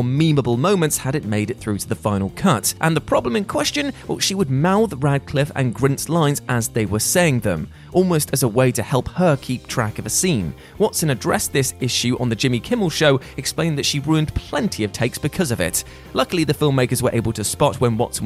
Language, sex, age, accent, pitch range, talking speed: English, male, 20-39, British, 110-145 Hz, 225 wpm